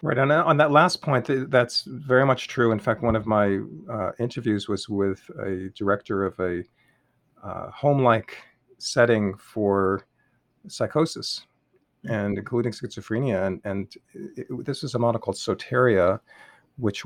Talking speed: 150 wpm